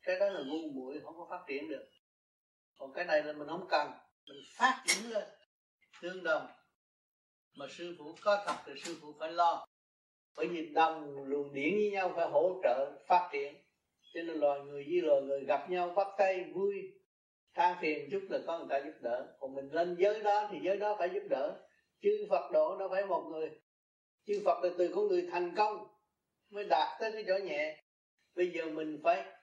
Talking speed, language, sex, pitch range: 210 wpm, Vietnamese, male, 145-200 Hz